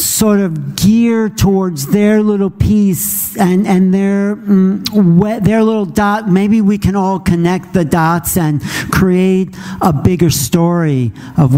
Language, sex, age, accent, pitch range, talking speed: English, male, 50-69, American, 135-175 Hz, 140 wpm